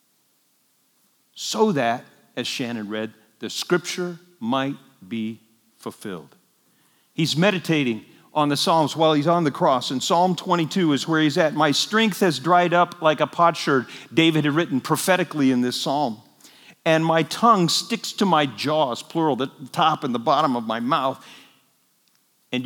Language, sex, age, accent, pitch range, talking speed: English, male, 50-69, American, 120-170 Hz, 155 wpm